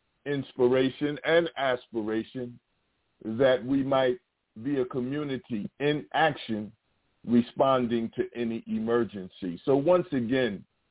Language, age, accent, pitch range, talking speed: English, 50-69, American, 120-140 Hz, 100 wpm